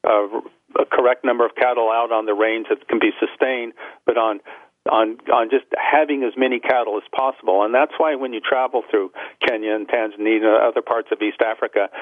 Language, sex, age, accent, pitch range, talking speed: English, male, 50-69, American, 110-150 Hz, 205 wpm